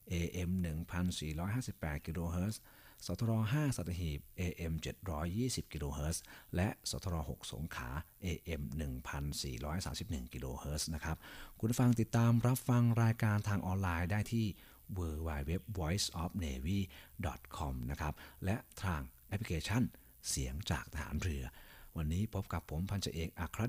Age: 60-79